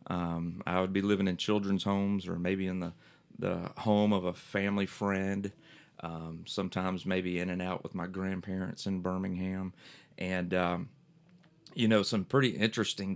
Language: English